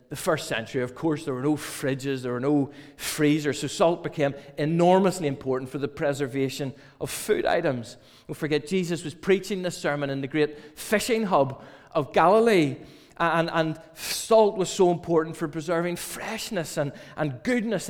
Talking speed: 170 wpm